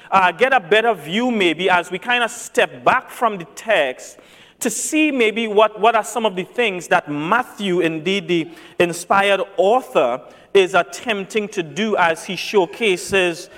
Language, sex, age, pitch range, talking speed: English, male, 40-59, 190-245 Hz, 170 wpm